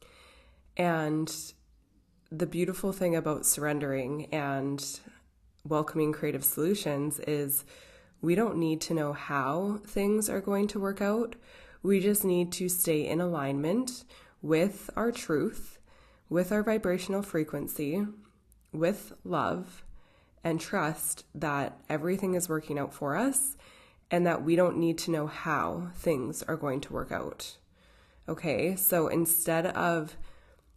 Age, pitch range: 20-39, 145-175 Hz